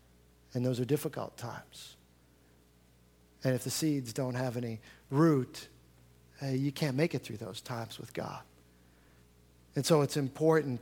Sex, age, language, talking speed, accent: male, 50-69, English, 145 wpm, American